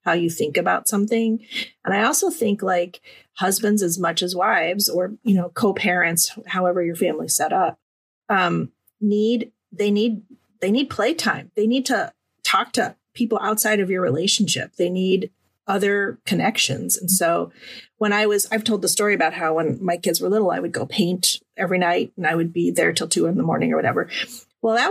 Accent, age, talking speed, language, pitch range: American, 30-49, 200 wpm, English, 190-235 Hz